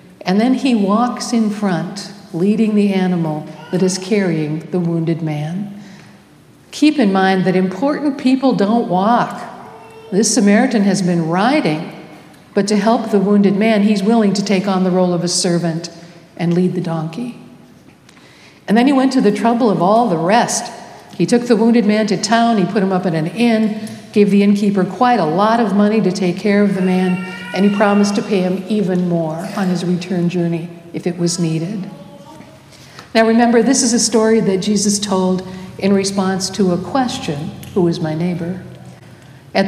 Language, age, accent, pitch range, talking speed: English, 60-79, American, 180-220 Hz, 185 wpm